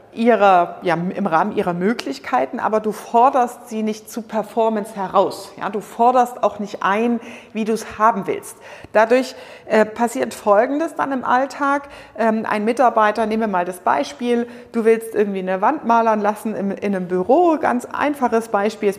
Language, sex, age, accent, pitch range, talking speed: German, female, 40-59, German, 205-250 Hz, 160 wpm